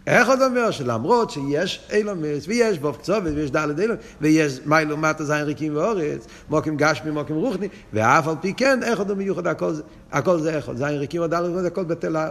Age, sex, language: 60-79, male, Hebrew